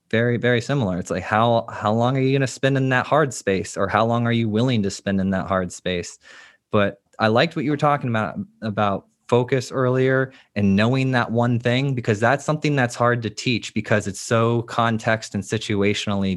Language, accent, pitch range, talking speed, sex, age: English, American, 100-125 Hz, 215 wpm, male, 20-39